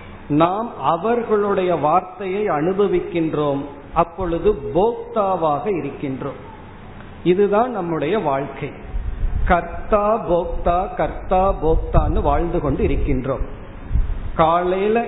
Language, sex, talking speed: Tamil, male, 55 wpm